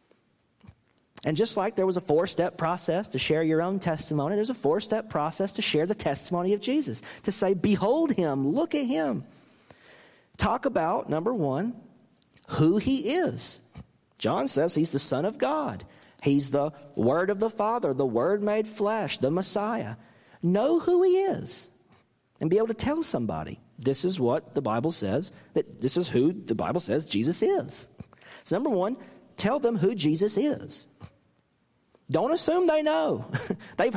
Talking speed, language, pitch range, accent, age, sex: 165 wpm, English, 130-220 Hz, American, 40-59, male